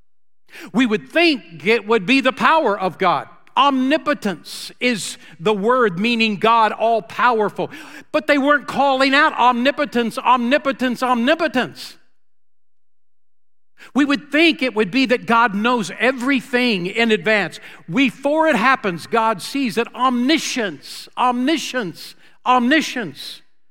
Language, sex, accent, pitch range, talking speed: English, male, American, 175-255 Hz, 115 wpm